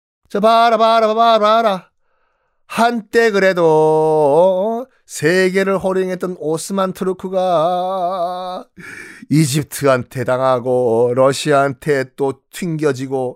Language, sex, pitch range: Korean, male, 125-195 Hz